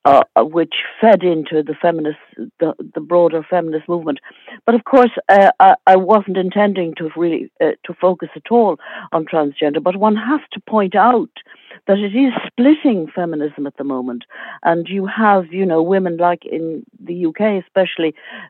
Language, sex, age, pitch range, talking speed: English, female, 60-79, 160-195 Hz, 170 wpm